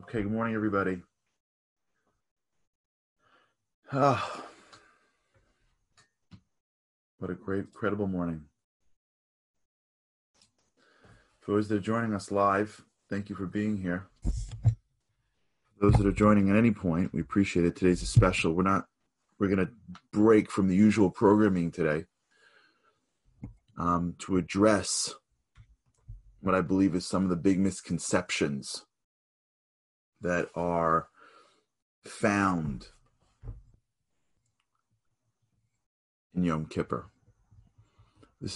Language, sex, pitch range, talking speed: English, male, 90-105 Hz, 100 wpm